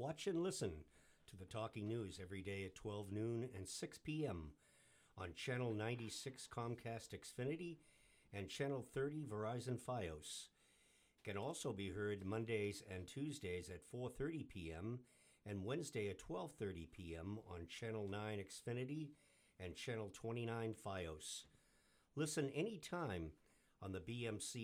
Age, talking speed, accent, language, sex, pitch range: 50-69, 130 wpm, American, English, male, 95-125 Hz